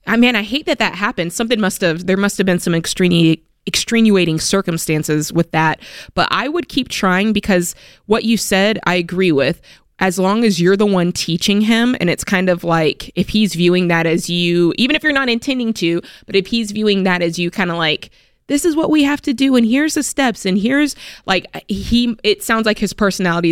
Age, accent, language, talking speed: 20-39, American, English, 220 wpm